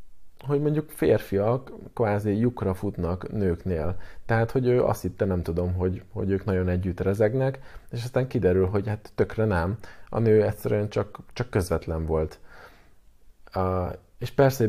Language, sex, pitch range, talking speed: Hungarian, male, 90-105 Hz, 150 wpm